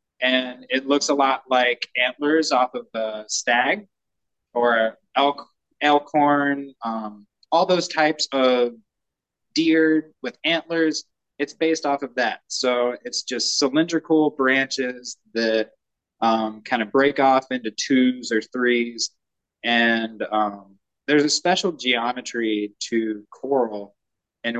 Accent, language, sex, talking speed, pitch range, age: American, English, male, 125 wpm, 115-145 Hz, 20-39